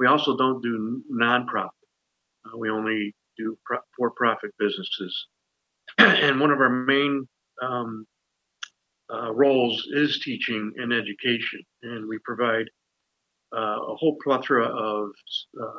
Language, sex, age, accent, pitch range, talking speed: English, male, 50-69, American, 105-125 Hz, 120 wpm